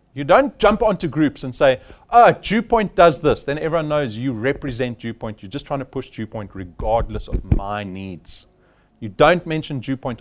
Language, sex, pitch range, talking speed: English, male, 125-200 Hz, 180 wpm